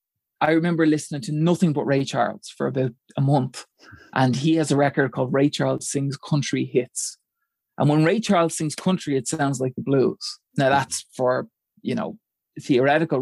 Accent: Irish